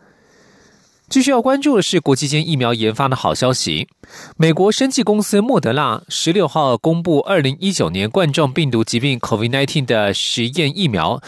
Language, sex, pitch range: German, male, 125-180 Hz